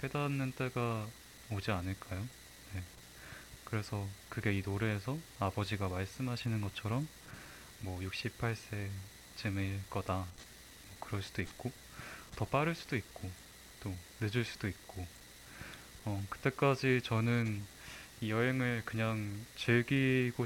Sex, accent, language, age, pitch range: male, native, Korean, 20-39, 95-120 Hz